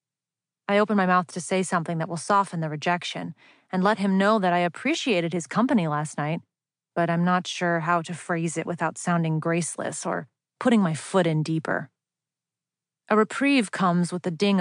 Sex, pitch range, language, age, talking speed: female, 165-205 Hz, English, 30-49, 190 wpm